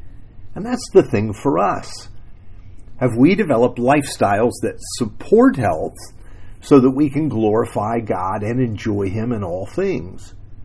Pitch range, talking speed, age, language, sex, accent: 95-130 Hz, 140 wpm, 50-69, English, male, American